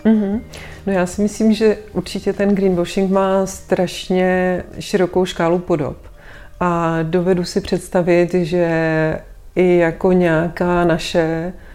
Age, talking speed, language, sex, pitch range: 30-49, 115 wpm, Czech, female, 170-185 Hz